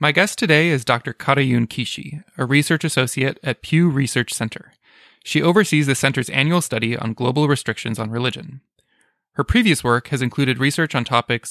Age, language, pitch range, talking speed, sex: 20-39, English, 125-155 Hz, 170 wpm, male